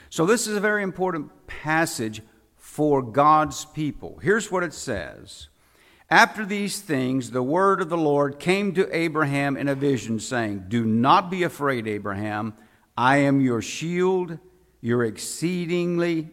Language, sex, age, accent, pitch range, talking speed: English, male, 60-79, American, 120-165 Hz, 145 wpm